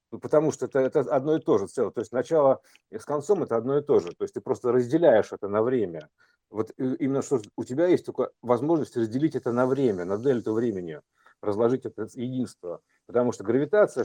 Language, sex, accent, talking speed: Russian, male, native, 205 wpm